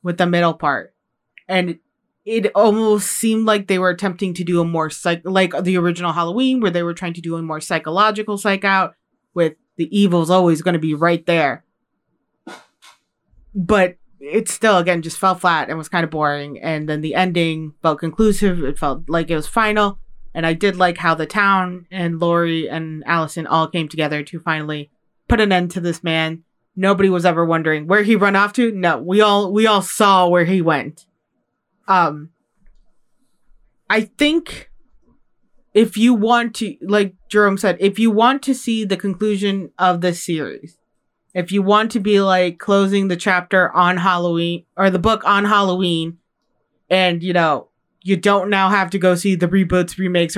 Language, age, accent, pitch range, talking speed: English, 30-49, American, 170-200 Hz, 185 wpm